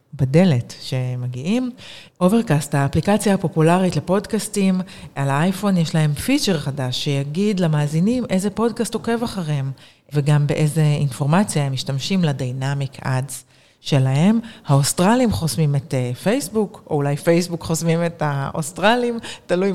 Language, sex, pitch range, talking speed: Hebrew, female, 145-185 Hz, 110 wpm